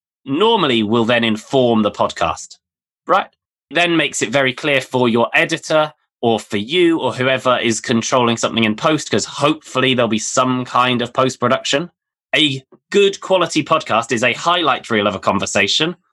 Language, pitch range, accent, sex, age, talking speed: English, 115-150 Hz, British, male, 20-39, 165 wpm